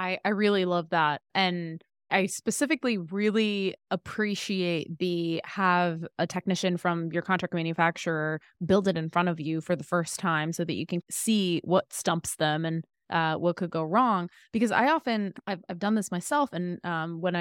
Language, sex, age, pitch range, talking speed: English, female, 20-39, 165-195 Hz, 180 wpm